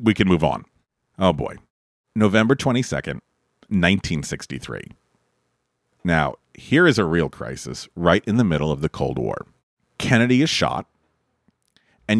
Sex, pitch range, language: male, 85-115 Hz, English